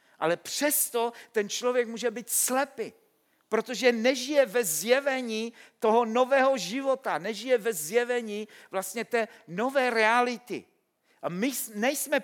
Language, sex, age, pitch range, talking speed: Czech, male, 50-69, 225-275 Hz, 120 wpm